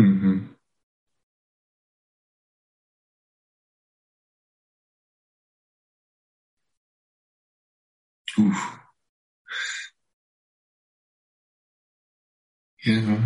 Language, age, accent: English, 50-69, American